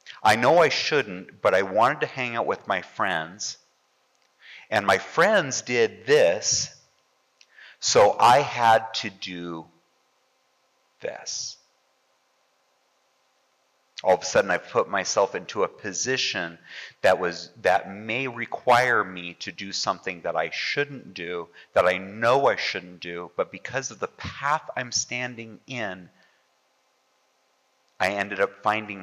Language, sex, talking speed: English, male, 130 wpm